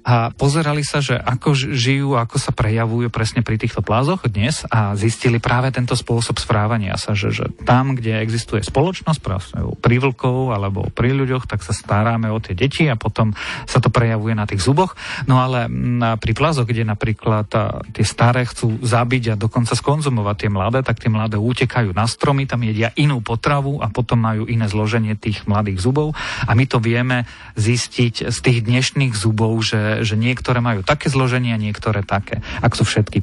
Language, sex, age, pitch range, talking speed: Slovak, male, 40-59, 110-130 Hz, 180 wpm